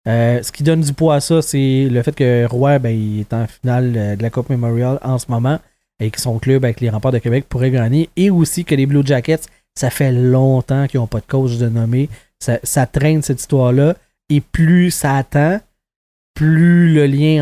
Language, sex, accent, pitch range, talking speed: French, male, Canadian, 130-160 Hz, 220 wpm